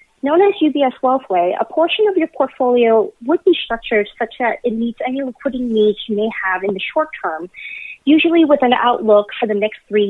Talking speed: 200 wpm